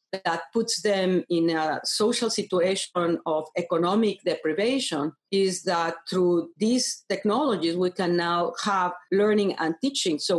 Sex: female